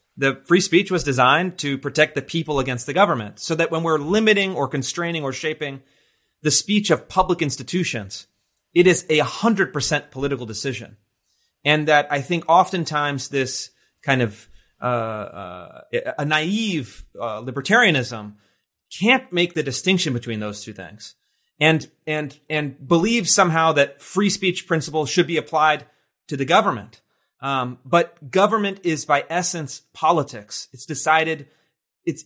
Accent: American